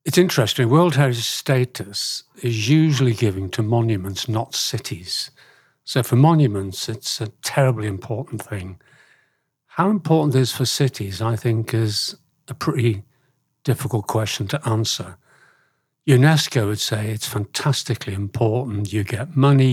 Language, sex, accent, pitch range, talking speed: English, male, British, 110-140 Hz, 130 wpm